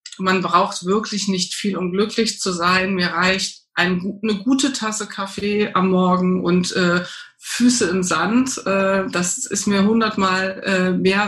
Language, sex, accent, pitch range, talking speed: German, female, German, 175-210 Hz, 145 wpm